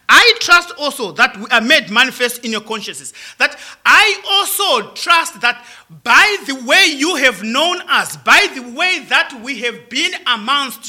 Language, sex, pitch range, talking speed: English, male, 205-330 Hz, 170 wpm